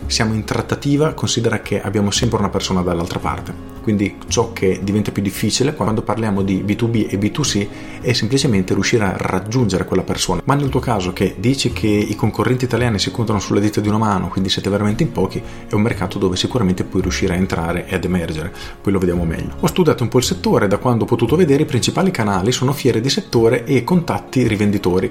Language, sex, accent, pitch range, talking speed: Italian, male, native, 95-125 Hz, 215 wpm